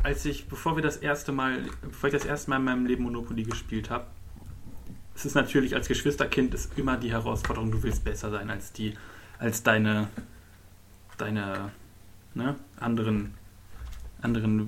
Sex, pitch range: male, 100-140 Hz